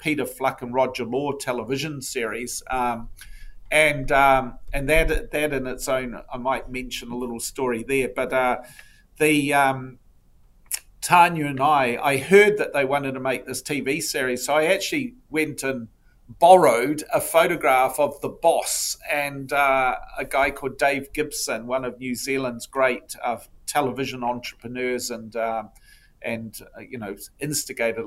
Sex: male